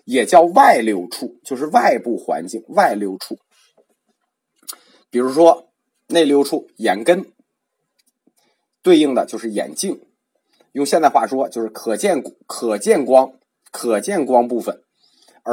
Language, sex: Chinese, male